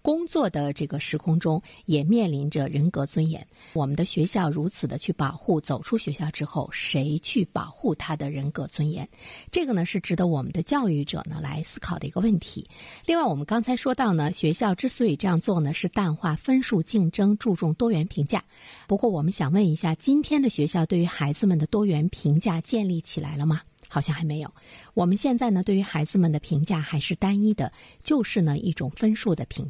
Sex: female